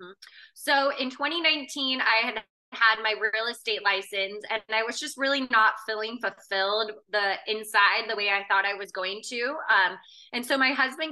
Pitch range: 210-255 Hz